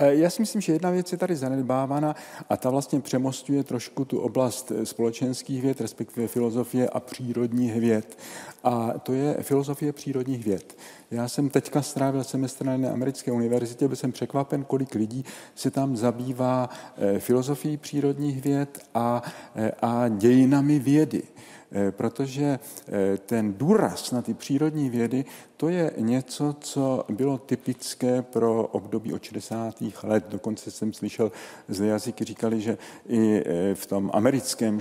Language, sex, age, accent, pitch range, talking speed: Czech, male, 50-69, native, 105-130 Hz, 140 wpm